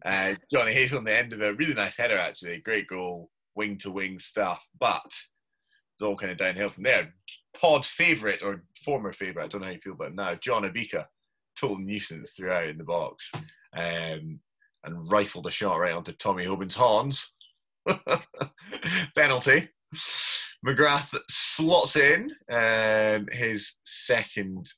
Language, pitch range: English, 95-140 Hz